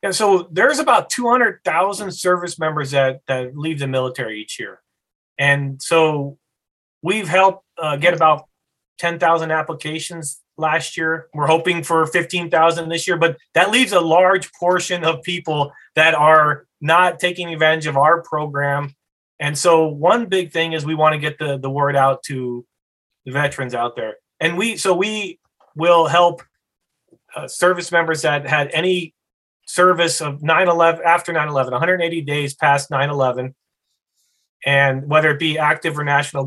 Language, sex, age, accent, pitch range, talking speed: English, male, 30-49, American, 140-170 Hz, 155 wpm